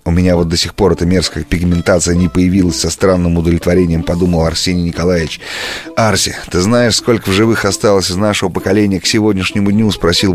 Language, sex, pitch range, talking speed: Russian, male, 80-100 Hz, 180 wpm